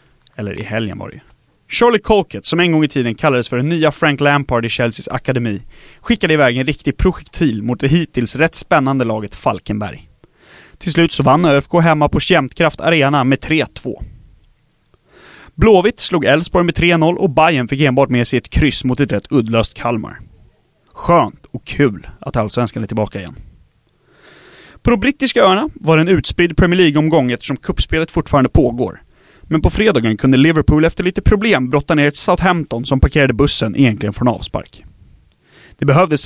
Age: 30-49